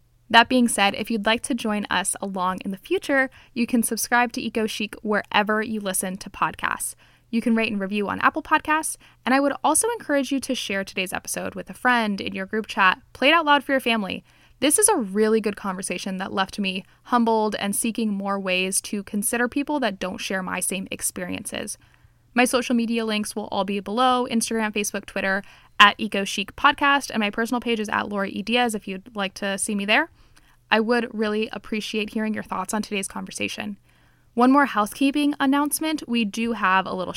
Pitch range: 195-240 Hz